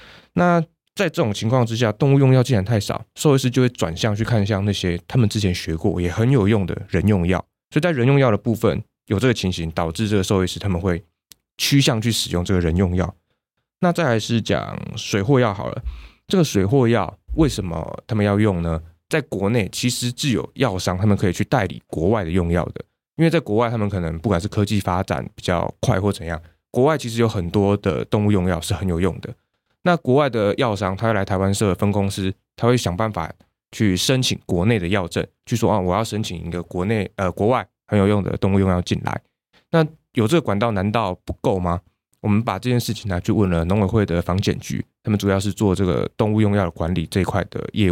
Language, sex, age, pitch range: Chinese, male, 20-39, 95-120 Hz